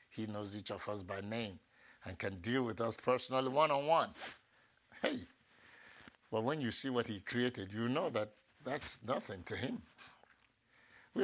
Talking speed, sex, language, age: 160 wpm, male, English, 50-69